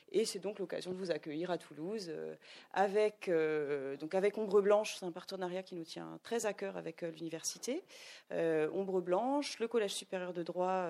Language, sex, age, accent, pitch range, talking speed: French, female, 30-49, French, 170-225 Hz, 195 wpm